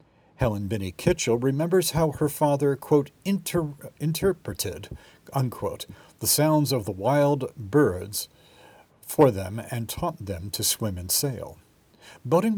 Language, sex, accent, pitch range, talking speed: English, male, American, 100-145 Hz, 125 wpm